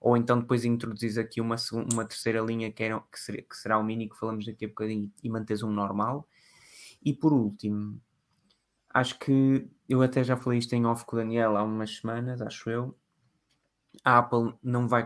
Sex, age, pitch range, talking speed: male, 20-39, 110-130 Hz, 185 wpm